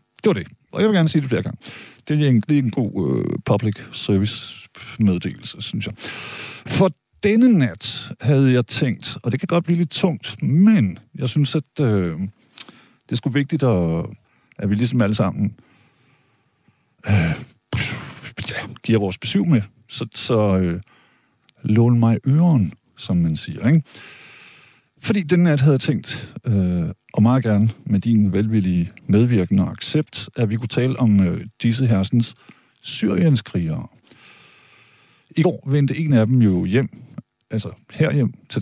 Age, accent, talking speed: 50-69, native, 155 wpm